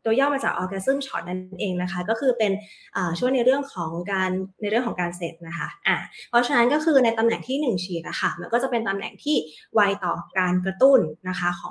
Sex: female